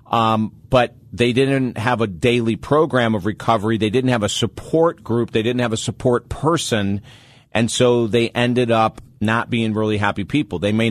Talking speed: 185 wpm